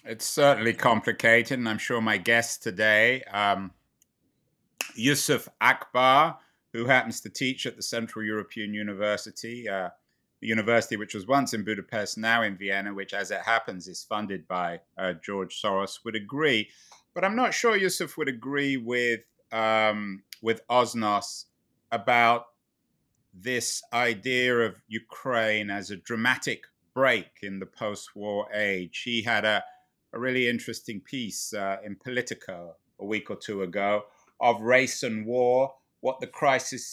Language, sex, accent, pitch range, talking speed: English, male, British, 105-125 Hz, 145 wpm